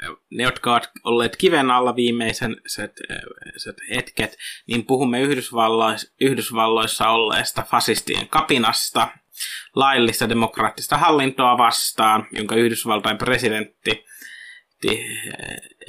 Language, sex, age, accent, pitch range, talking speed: Finnish, male, 20-39, native, 115-140 Hz, 85 wpm